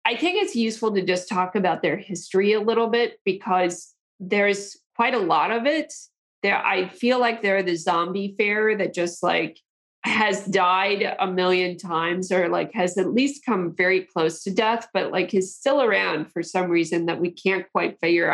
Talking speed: 195 wpm